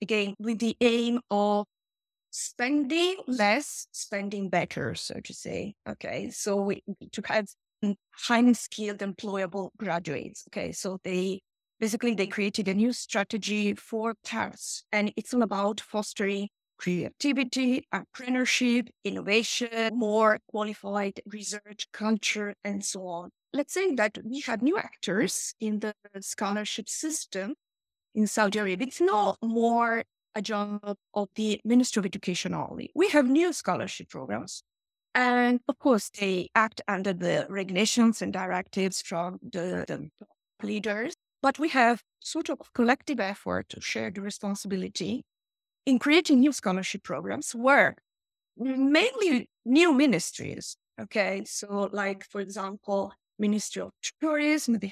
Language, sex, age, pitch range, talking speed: English, female, 20-39, 200-250 Hz, 130 wpm